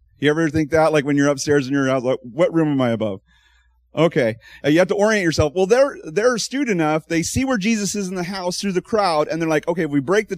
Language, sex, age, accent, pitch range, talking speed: English, male, 30-49, American, 130-185 Hz, 270 wpm